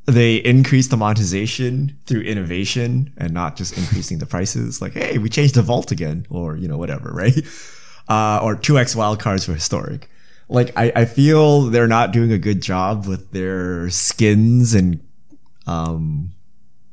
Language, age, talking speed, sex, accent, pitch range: English, 20-39, 165 wpm, male, American, 100-125 Hz